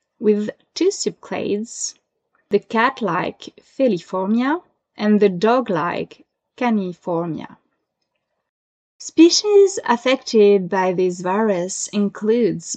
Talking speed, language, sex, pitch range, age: 75 wpm, English, female, 180-235 Hz, 20-39